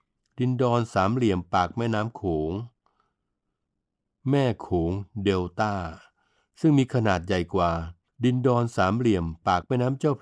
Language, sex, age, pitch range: Thai, male, 60-79, 95-120 Hz